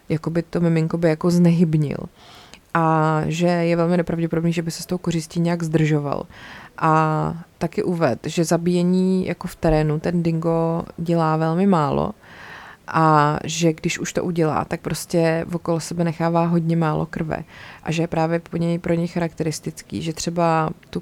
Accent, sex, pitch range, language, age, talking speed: native, female, 160-180 Hz, Czech, 30-49, 165 wpm